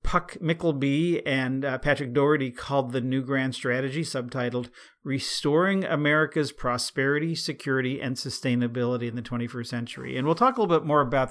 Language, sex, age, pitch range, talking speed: English, male, 50-69, 120-145 Hz, 160 wpm